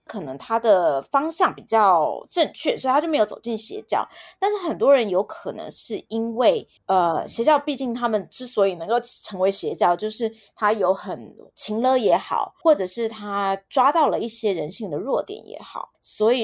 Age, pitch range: 20-39, 210-305 Hz